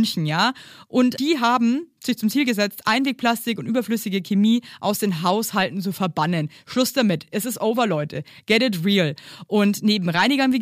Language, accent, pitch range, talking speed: German, German, 185-235 Hz, 175 wpm